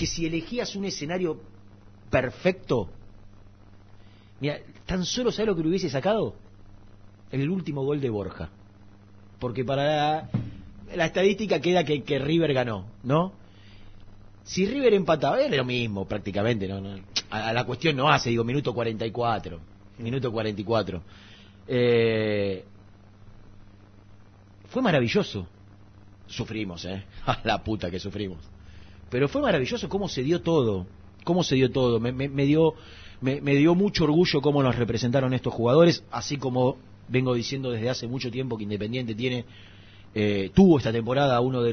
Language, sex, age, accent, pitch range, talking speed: Spanish, male, 40-59, Argentinian, 100-150 Hz, 150 wpm